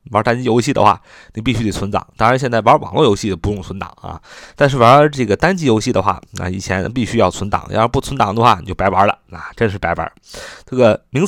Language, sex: Chinese, male